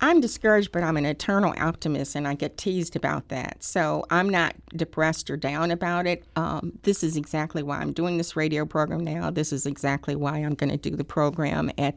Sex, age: female, 50-69